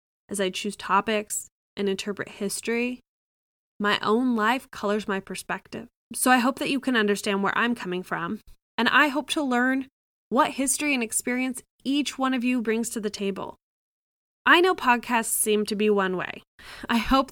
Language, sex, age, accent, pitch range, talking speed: English, female, 10-29, American, 200-255 Hz, 175 wpm